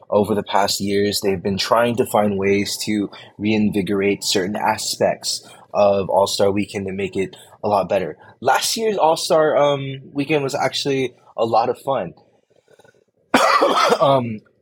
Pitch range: 105-145 Hz